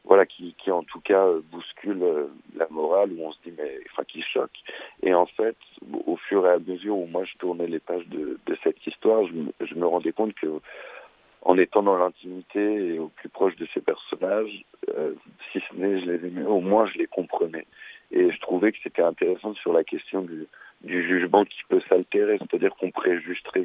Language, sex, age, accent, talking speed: French, male, 50-69, French, 210 wpm